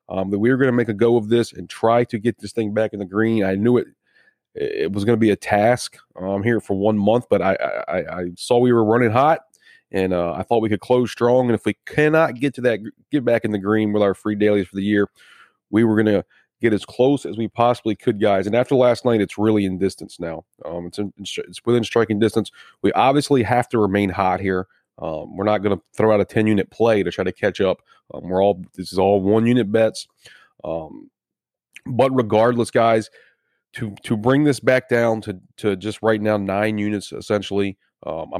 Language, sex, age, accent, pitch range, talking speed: English, male, 30-49, American, 100-120 Hz, 235 wpm